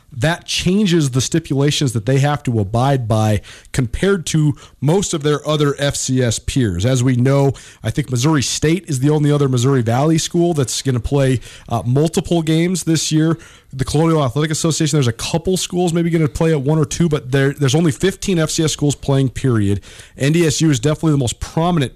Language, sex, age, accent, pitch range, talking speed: English, male, 40-59, American, 125-160 Hz, 195 wpm